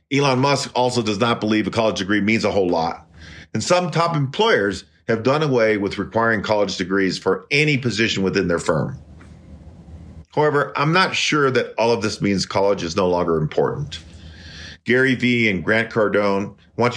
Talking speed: 175 wpm